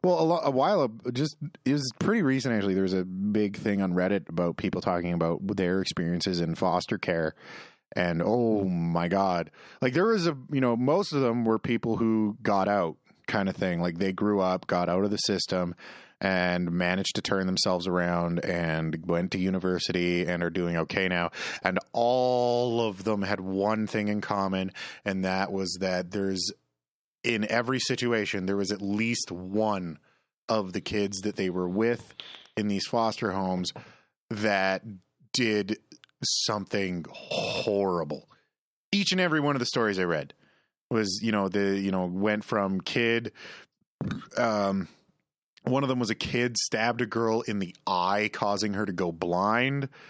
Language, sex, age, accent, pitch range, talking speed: English, male, 30-49, American, 90-115 Hz, 170 wpm